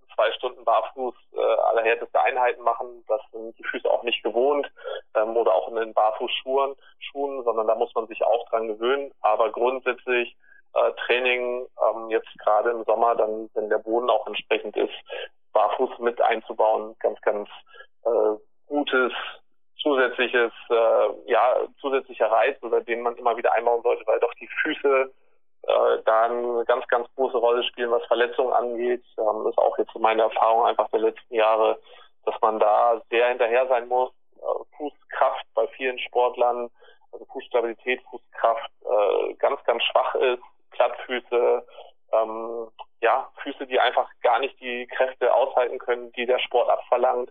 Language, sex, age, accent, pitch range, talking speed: German, male, 20-39, German, 115-130 Hz, 160 wpm